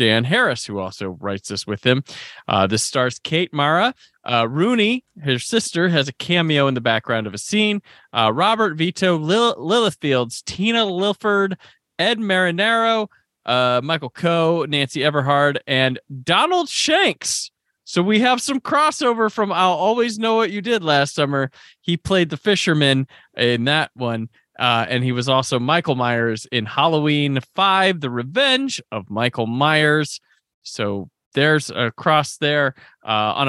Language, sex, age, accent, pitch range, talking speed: English, male, 20-39, American, 125-185 Hz, 155 wpm